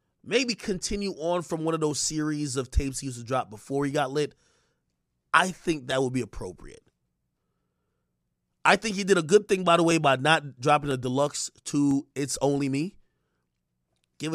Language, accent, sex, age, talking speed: English, American, male, 30-49, 185 wpm